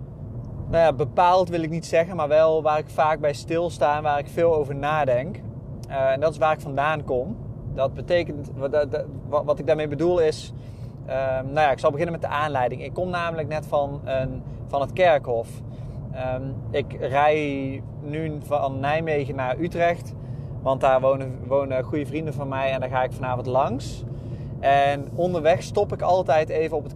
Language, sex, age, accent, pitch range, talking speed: Dutch, male, 20-39, Dutch, 130-155 Hz, 185 wpm